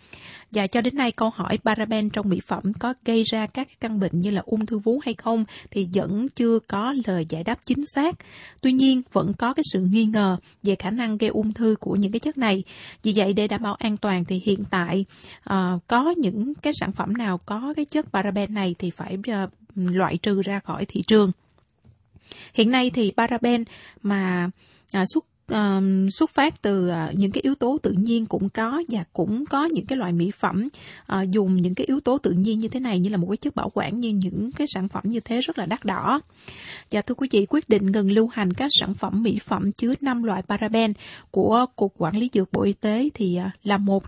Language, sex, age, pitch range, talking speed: Vietnamese, female, 20-39, 195-230 Hz, 225 wpm